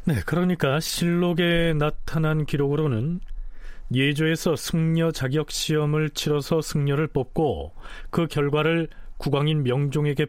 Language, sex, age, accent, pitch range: Korean, male, 40-59, native, 105-160 Hz